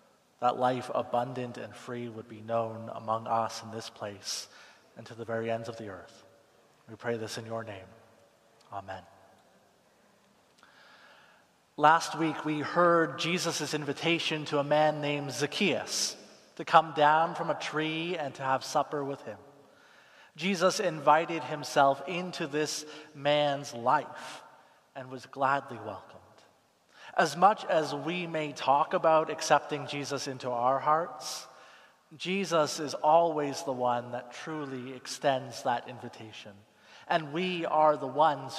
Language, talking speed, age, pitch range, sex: English, 140 wpm, 30-49, 120-155 Hz, male